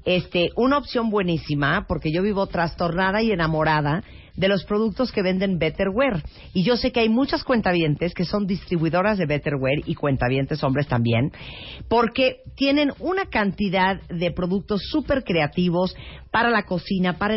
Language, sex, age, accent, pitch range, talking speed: Spanish, female, 40-59, Mexican, 150-205 Hz, 150 wpm